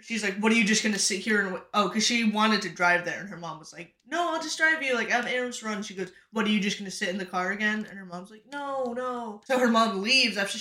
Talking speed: 315 wpm